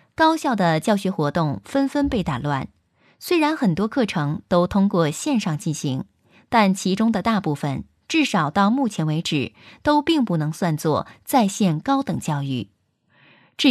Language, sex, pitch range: Chinese, female, 155-230 Hz